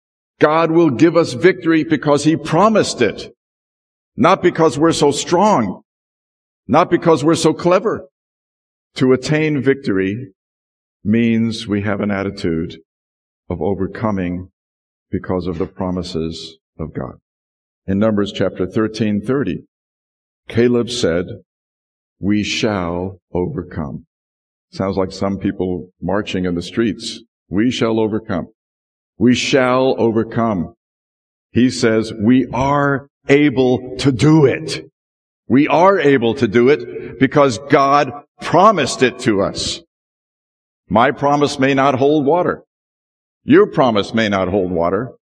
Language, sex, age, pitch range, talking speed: English, male, 50-69, 95-135 Hz, 120 wpm